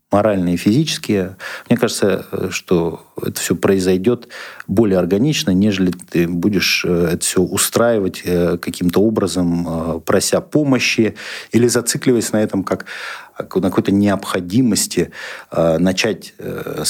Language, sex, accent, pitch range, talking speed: Russian, male, native, 95-115 Hz, 105 wpm